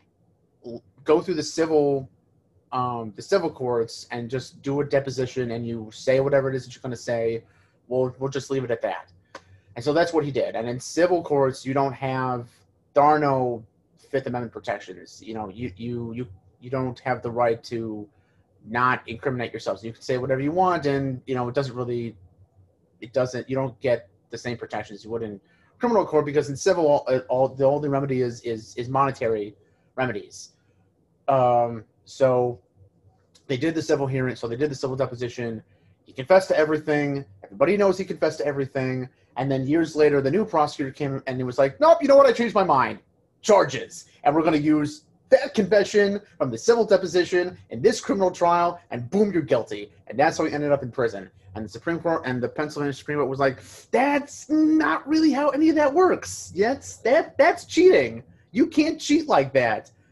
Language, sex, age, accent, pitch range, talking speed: English, male, 30-49, American, 115-155 Hz, 200 wpm